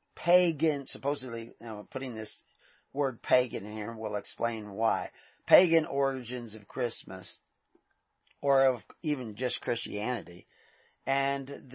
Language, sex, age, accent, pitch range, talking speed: English, male, 40-59, American, 120-150 Hz, 105 wpm